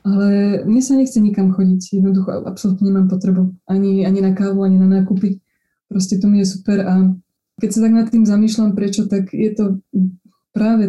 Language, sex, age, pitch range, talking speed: Slovak, female, 20-39, 185-200 Hz, 185 wpm